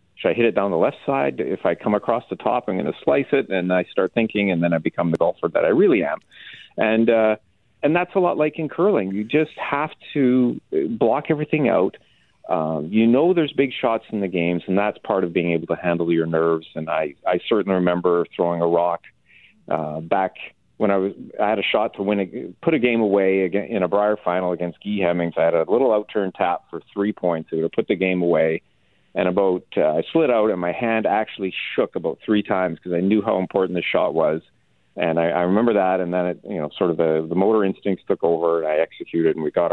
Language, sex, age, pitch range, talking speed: English, male, 40-59, 85-115 Hz, 240 wpm